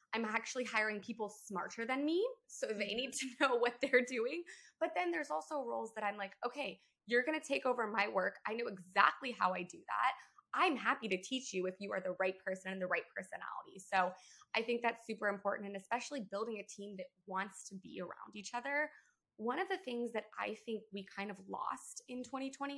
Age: 20-39